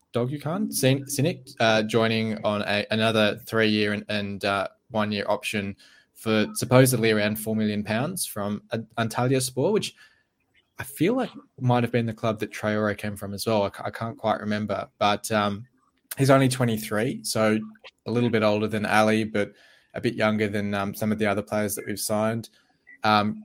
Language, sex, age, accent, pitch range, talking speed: English, male, 20-39, Australian, 105-120 Hz, 180 wpm